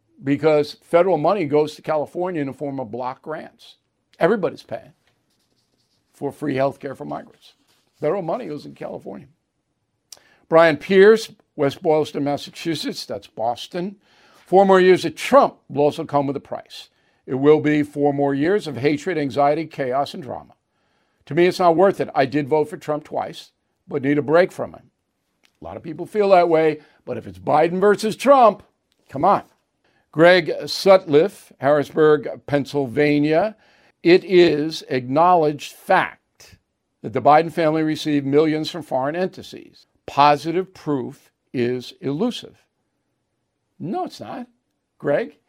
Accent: American